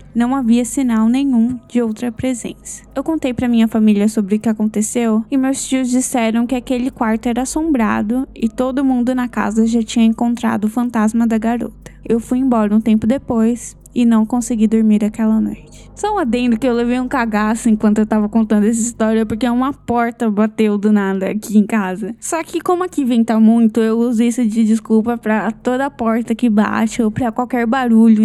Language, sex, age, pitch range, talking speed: Portuguese, female, 10-29, 220-255 Hz, 195 wpm